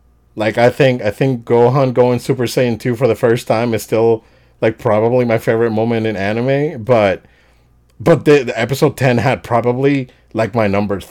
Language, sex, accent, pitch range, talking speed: English, male, American, 100-125 Hz, 185 wpm